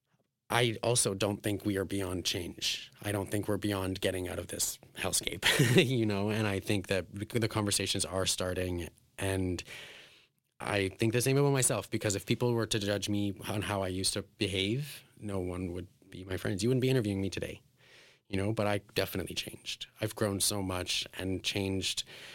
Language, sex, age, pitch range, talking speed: English, male, 30-49, 95-115 Hz, 195 wpm